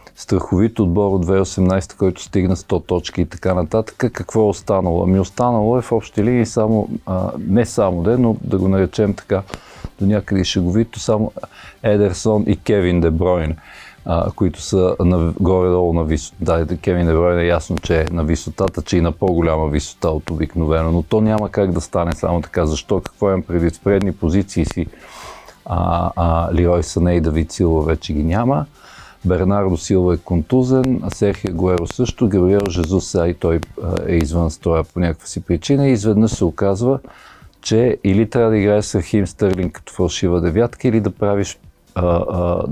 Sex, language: male, Bulgarian